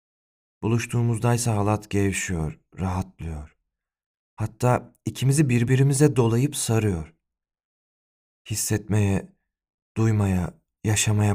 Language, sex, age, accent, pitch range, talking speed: Turkish, male, 40-59, native, 85-120 Hz, 65 wpm